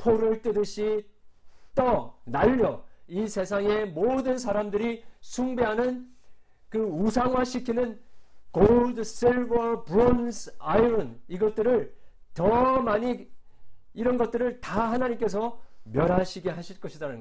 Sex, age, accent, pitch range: male, 50-69, native, 195-240 Hz